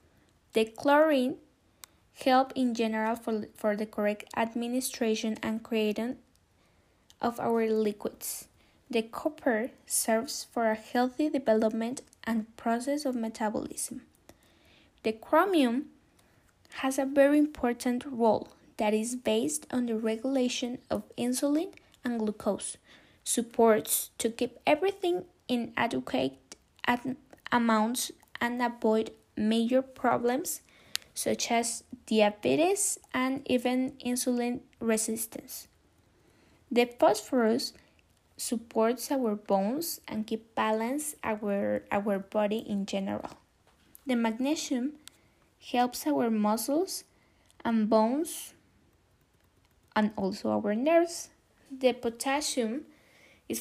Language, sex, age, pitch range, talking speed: English, female, 10-29, 220-270 Hz, 100 wpm